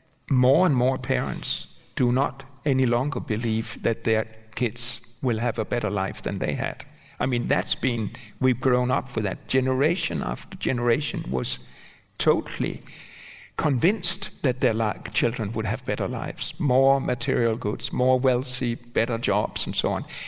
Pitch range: 115-140 Hz